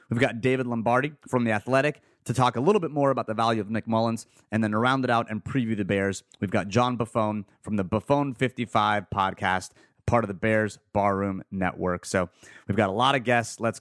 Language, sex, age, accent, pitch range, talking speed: English, male, 30-49, American, 100-125 Hz, 220 wpm